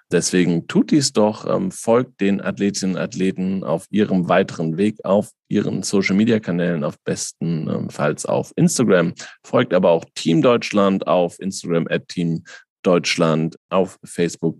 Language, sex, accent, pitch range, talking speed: German, male, German, 85-105 Hz, 130 wpm